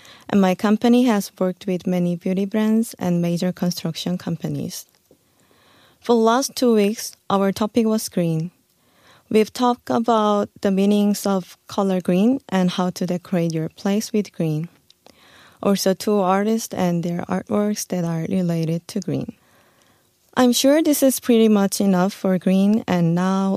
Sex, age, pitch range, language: female, 20-39, 180-225 Hz, Korean